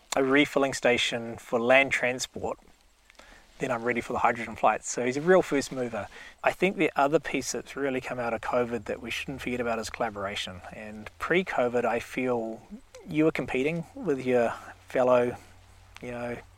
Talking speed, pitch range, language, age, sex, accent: 175 wpm, 115-140 Hz, English, 30-49, male, Australian